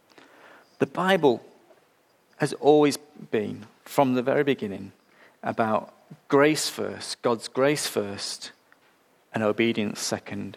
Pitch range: 110-145 Hz